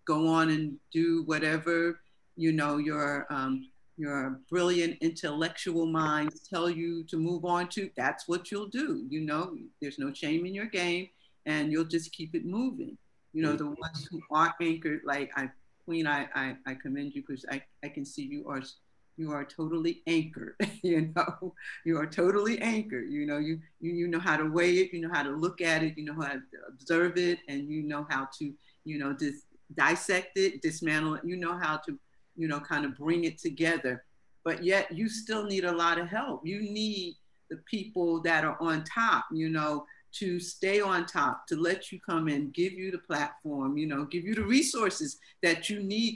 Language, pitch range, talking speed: English, 155-190 Hz, 205 wpm